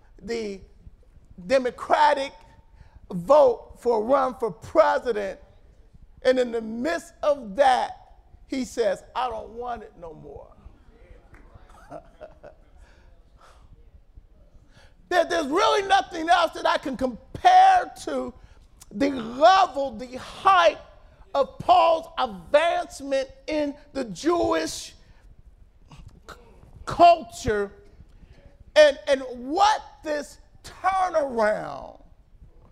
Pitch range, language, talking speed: 240-345 Hz, English, 90 wpm